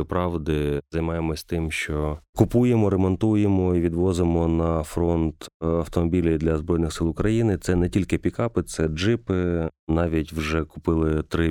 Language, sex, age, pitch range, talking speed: Ukrainian, male, 30-49, 80-90 Hz, 130 wpm